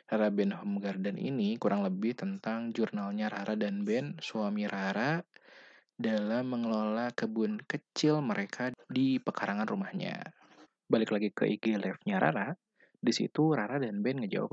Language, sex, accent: Indonesian, male, native